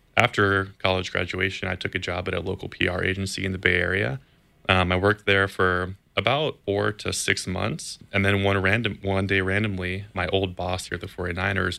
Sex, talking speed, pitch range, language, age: male, 205 wpm, 90-100 Hz, English, 20-39